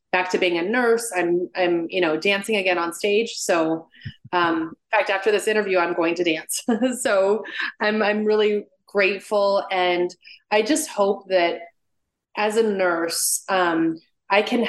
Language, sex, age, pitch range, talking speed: English, female, 30-49, 175-215 Hz, 165 wpm